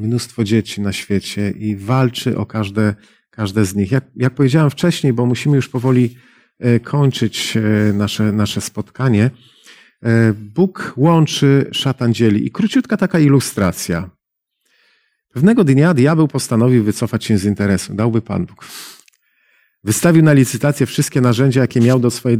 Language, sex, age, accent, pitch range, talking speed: Polish, male, 40-59, native, 115-140 Hz, 135 wpm